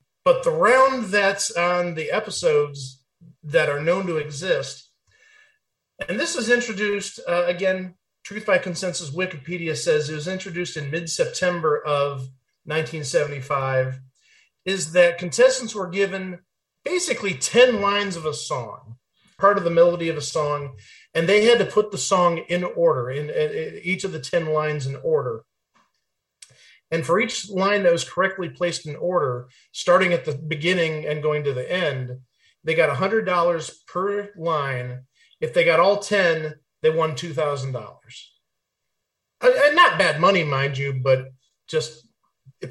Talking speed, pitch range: 150 wpm, 140-185 Hz